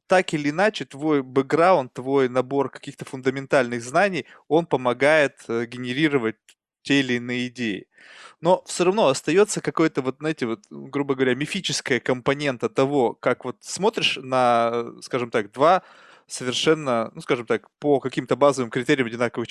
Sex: male